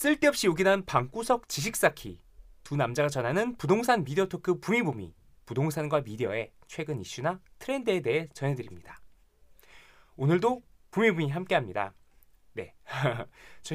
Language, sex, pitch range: Korean, male, 115-185 Hz